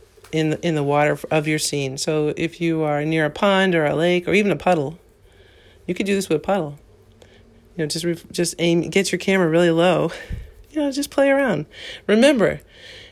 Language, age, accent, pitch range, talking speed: English, 40-59, American, 155-195 Hz, 200 wpm